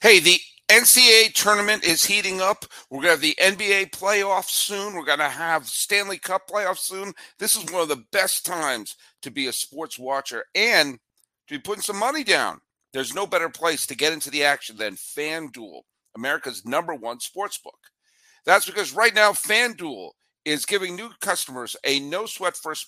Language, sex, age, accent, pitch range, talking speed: English, male, 50-69, American, 145-210 Hz, 180 wpm